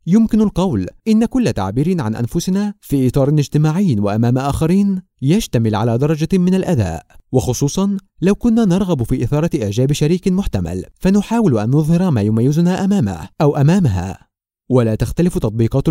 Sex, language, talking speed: male, Arabic, 140 wpm